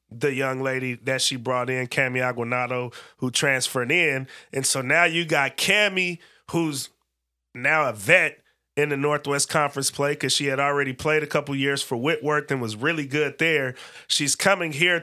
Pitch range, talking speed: 135-160 Hz, 180 wpm